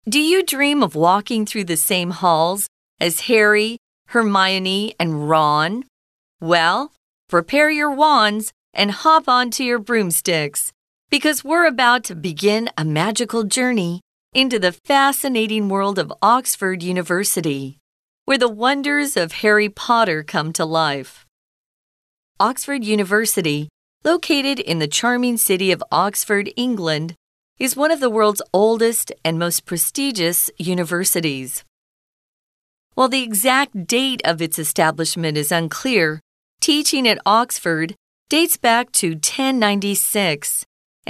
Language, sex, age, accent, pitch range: Chinese, female, 40-59, American, 170-245 Hz